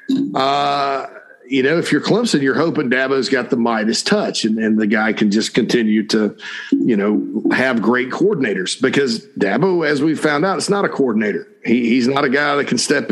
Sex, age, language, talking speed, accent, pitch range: male, 50-69, English, 200 wpm, American, 125-170 Hz